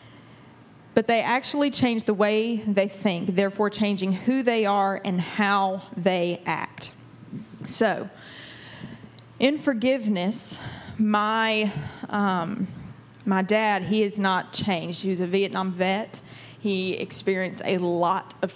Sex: female